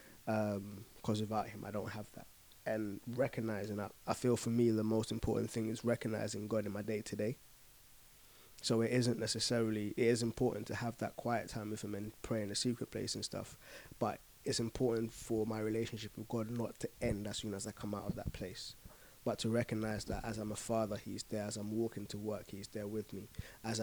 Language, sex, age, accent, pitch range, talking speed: English, male, 20-39, British, 105-115 Hz, 225 wpm